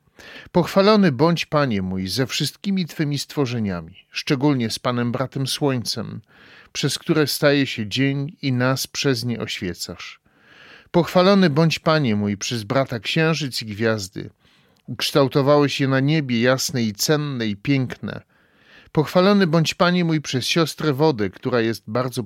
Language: Polish